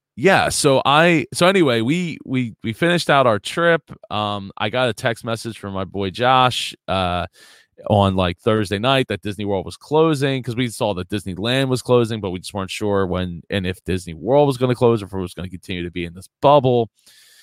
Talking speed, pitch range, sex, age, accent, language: 225 wpm, 95-125 Hz, male, 20-39, American, English